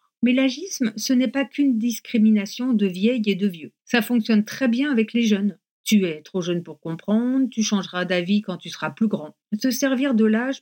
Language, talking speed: French, 210 wpm